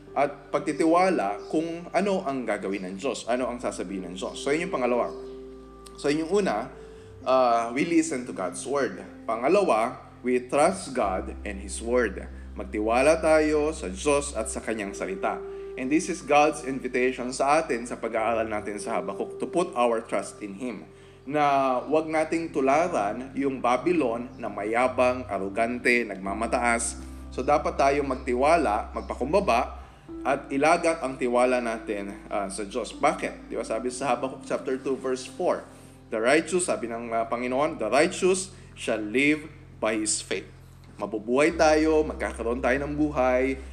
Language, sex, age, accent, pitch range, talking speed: Filipino, male, 20-39, native, 115-150 Hz, 150 wpm